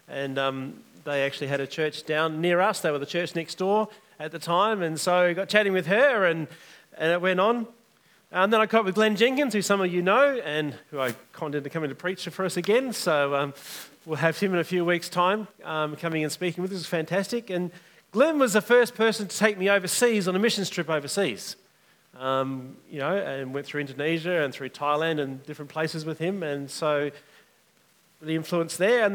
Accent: Australian